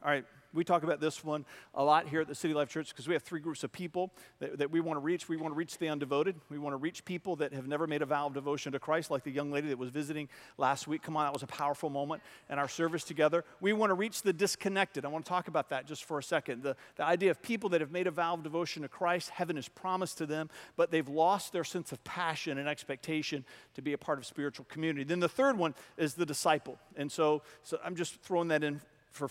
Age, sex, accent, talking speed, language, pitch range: 40-59, male, American, 280 wpm, English, 150-190 Hz